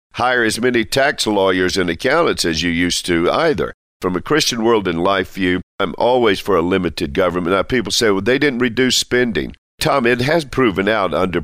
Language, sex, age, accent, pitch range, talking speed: English, male, 50-69, American, 85-115 Hz, 205 wpm